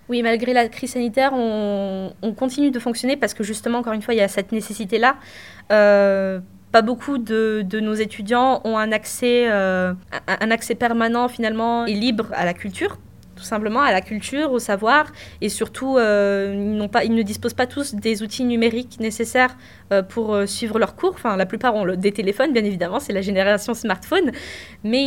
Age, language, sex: 20-39, French, female